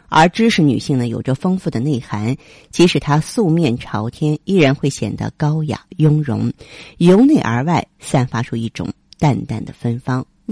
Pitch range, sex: 125-160 Hz, female